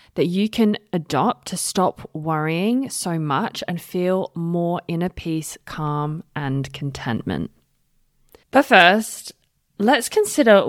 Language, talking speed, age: English, 120 wpm, 20-39